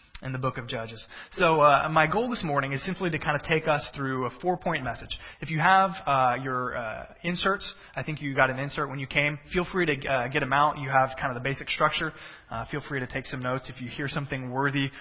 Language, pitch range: English, 135-170 Hz